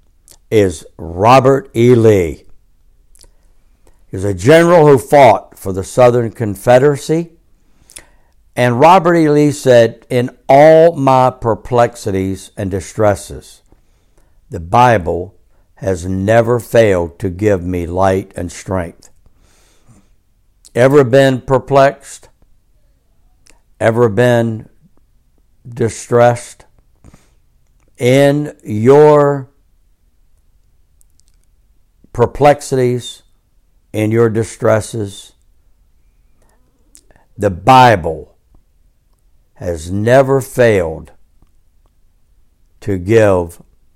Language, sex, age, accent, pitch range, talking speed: English, male, 60-79, American, 80-120 Hz, 75 wpm